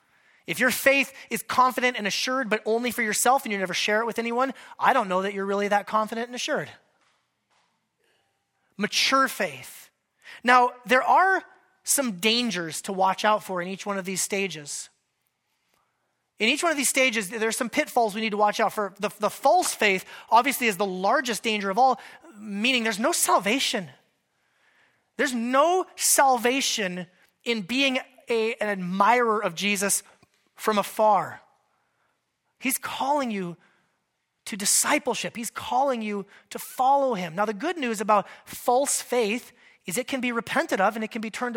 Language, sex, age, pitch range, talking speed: English, male, 30-49, 205-260 Hz, 165 wpm